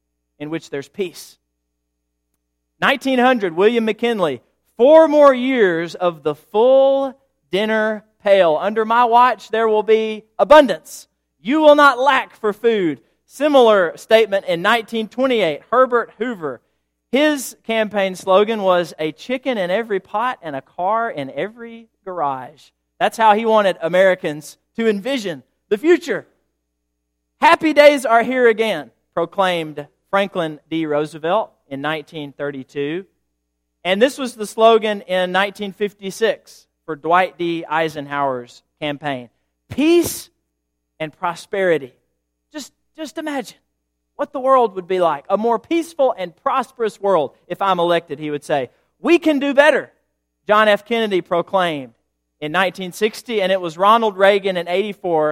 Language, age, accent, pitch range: English, 40-59, American, 150-230 Hz